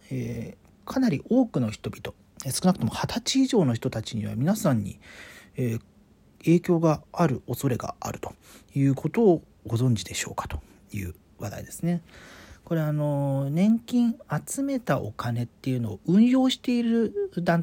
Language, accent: Japanese, native